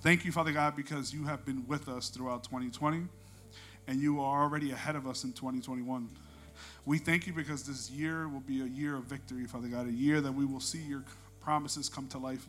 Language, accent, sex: Spanish, American, male